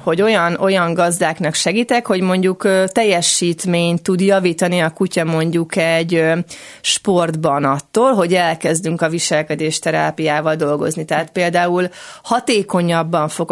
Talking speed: 115 wpm